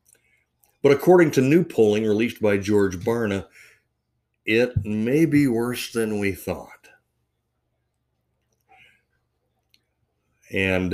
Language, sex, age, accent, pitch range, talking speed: English, male, 60-79, American, 100-125 Hz, 95 wpm